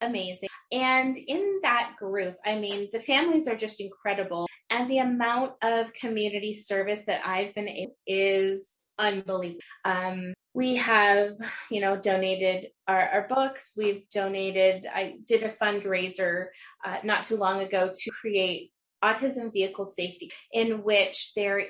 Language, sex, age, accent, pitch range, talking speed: English, female, 20-39, American, 190-230 Hz, 145 wpm